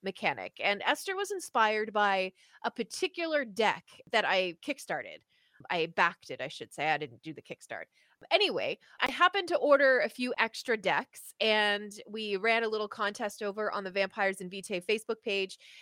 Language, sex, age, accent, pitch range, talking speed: English, female, 20-39, American, 190-250 Hz, 175 wpm